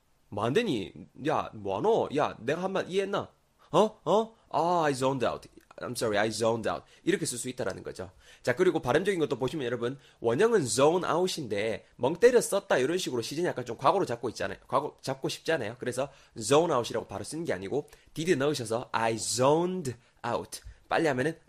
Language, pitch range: Korean, 115-175 Hz